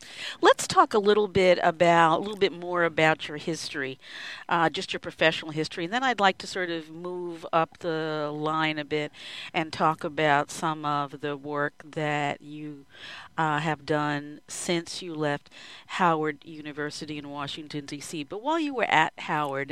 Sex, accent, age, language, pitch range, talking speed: female, American, 50-69, English, 155-180 Hz, 175 wpm